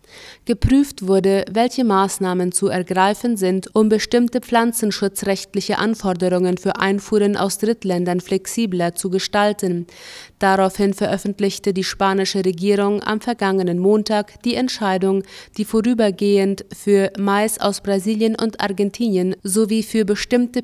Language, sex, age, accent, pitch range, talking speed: German, female, 20-39, German, 190-220 Hz, 115 wpm